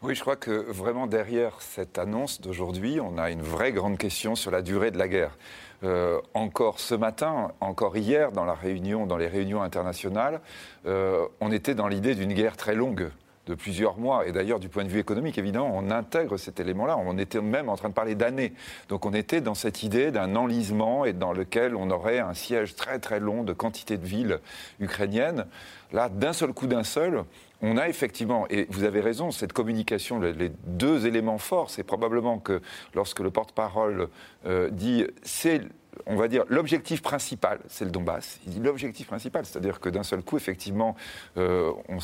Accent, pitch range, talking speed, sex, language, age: French, 95-115 Hz, 195 wpm, male, French, 40-59